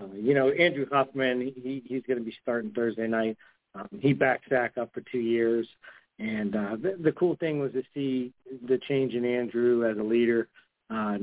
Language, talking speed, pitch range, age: English, 210 wpm, 115-135 Hz, 50-69